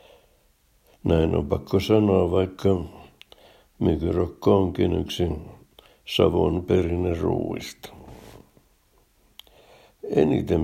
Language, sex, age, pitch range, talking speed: Finnish, male, 60-79, 90-100 Hz, 60 wpm